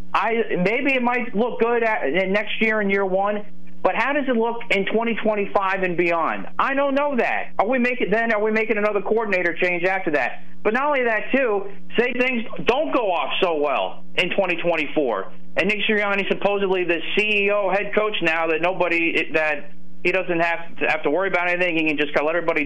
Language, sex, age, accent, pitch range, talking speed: English, male, 40-59, American, 130-210 Hz, 210 wpm